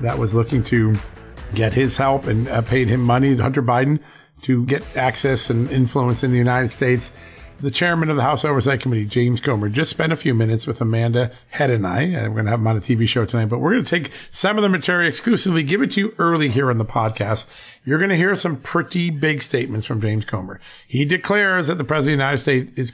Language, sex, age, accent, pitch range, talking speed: English, male, 50-69, American, 115-145 Hz, 240 wpm